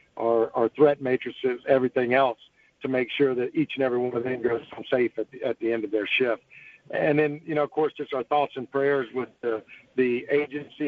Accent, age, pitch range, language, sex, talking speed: American, 50-69, 120-140 Hz, English, male, 220 wpm